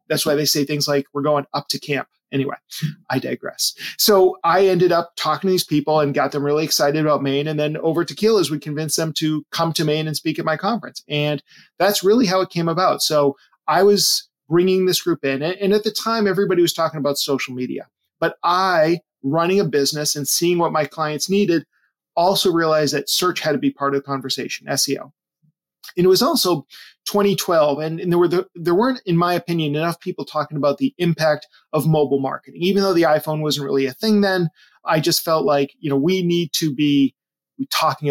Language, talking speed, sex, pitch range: English, 215 wpm, male, 145-180 Hz